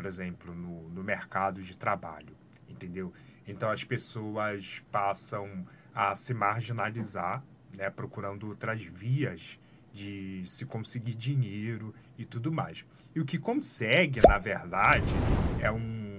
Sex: male